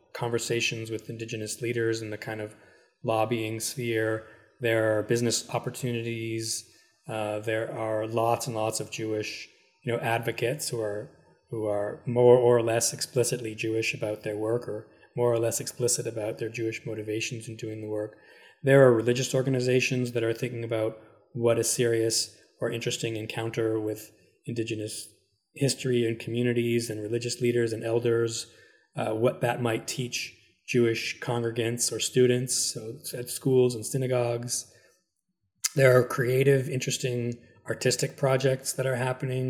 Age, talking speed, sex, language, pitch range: 20-39, 145 wpm, male, English, 110-125 Hz